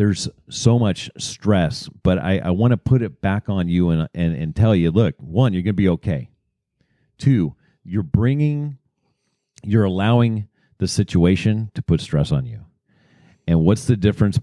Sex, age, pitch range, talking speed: male, 40-59, 95-130 Hz, 175 wpm